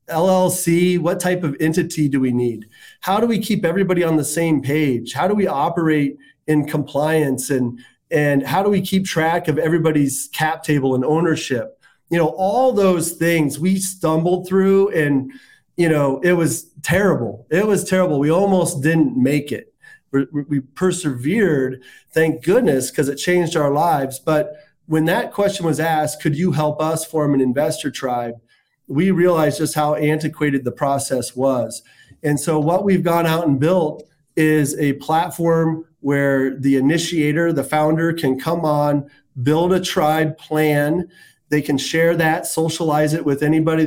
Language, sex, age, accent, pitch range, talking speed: English, male, 30-49, American, 145-170 Hz, 165 wpm